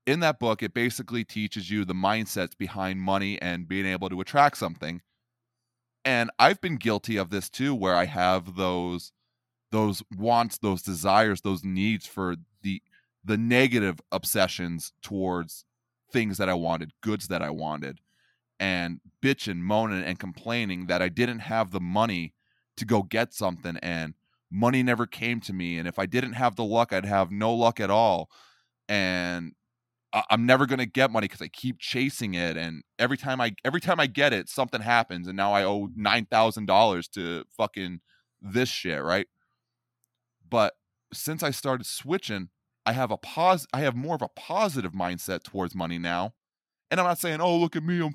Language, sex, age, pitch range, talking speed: English, male, 20-39, 95-125 Hz, 180 wpm